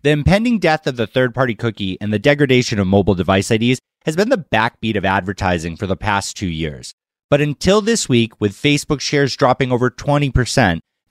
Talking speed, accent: 190 wpm, American